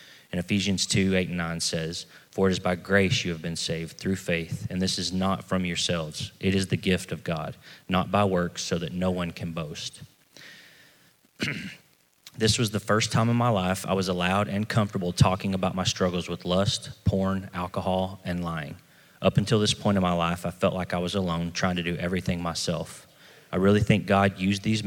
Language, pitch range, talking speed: English, 90-105 Hz, 205 wpm